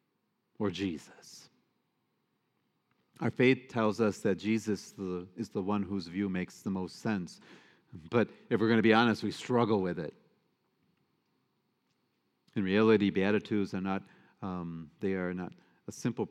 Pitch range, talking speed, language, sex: 95-110 Hz, 145 wpm, English, male